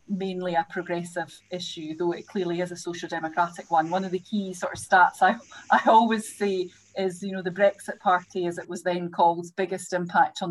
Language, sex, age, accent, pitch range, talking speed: English, female, 30-49, British, 175-190 Hz, 210 wpm